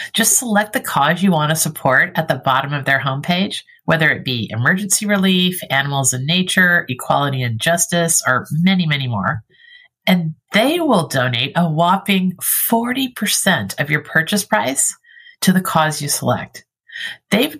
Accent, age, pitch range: American, 50-69, 140-195 Hz